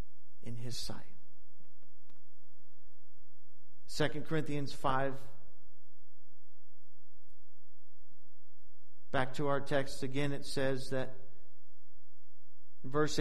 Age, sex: 50-69, male